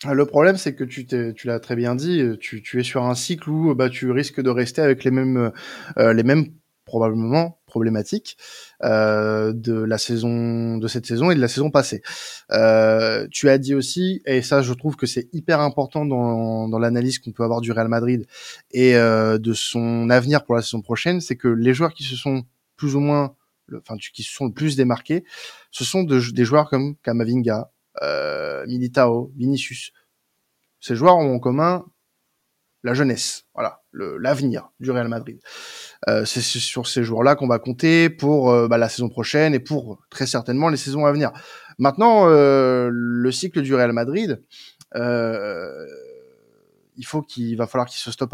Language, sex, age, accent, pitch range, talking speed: French, male, 20-39, French, 120-150 Hz, 185 wpm